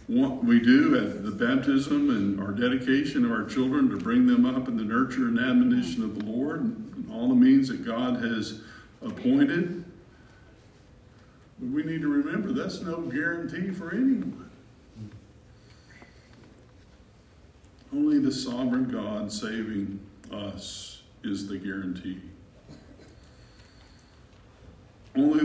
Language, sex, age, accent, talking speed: English, male, 50-69, American, 125 wpm